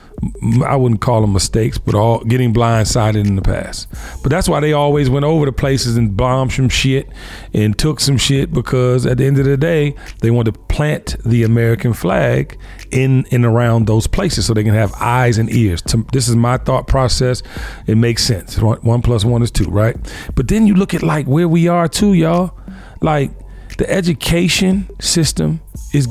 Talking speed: 195 wpm